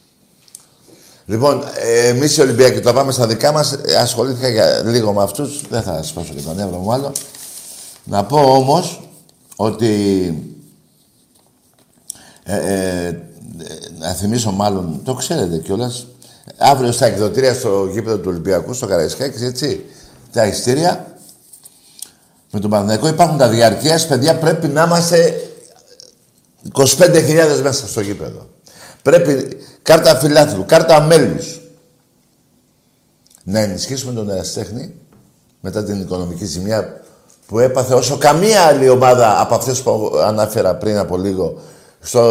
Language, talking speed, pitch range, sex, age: Greek, 120 wpm, 105-155 Hz, male, 60-79